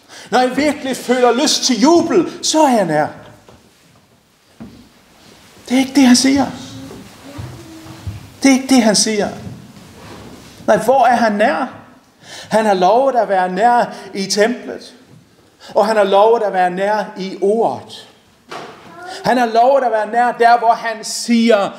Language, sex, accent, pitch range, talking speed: Danish, male, native, 195-255 Hz, 150 wpm